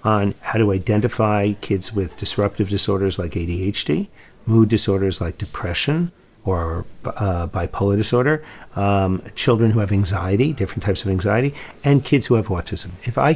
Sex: male